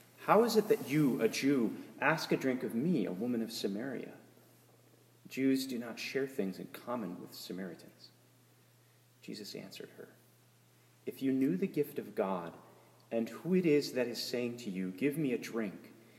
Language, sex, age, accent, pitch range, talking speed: English, male, 30-49, American, 115-140 Hz, 180 wpm